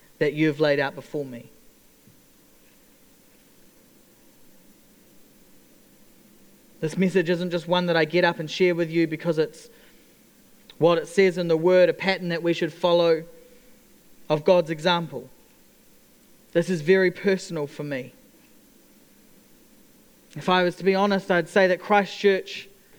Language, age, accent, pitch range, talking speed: English, 30-49, Australian, 170-200 Hz, 135 wpm